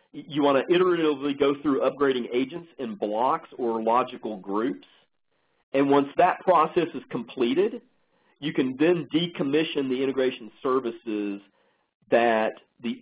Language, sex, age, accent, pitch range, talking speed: English, male, 40-59, American, 115-150 Hz, 130 wpm